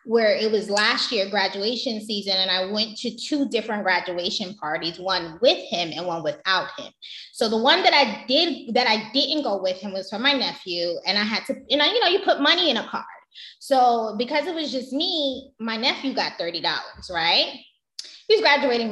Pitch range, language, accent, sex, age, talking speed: 215-295 Hz, English, American, female, 20-39, 205 wpm